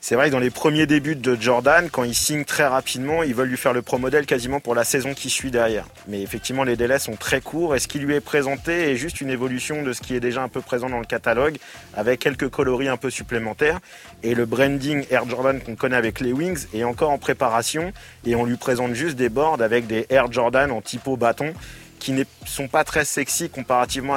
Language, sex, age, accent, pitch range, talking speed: French, male, 30-49, French, 120-140 Hz, 240 wpm